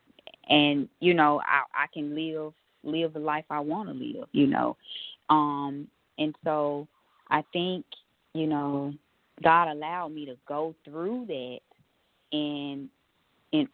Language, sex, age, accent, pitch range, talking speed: English, female, 20-39, American, 140-155 Hz, 140 wpm